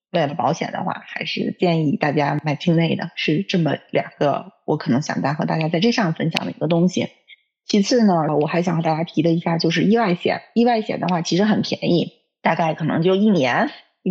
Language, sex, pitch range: Chinese, female, 160-200 Hz